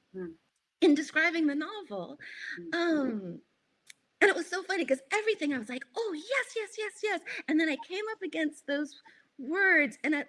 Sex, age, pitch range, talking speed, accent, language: female, 30-49, 230-330 Hz, 170 wpm, American, English